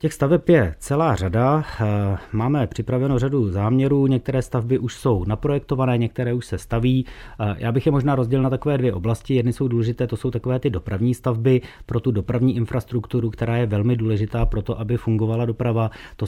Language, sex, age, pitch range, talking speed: Czech, male, 30-49, 105-125 Hz, 185 wpm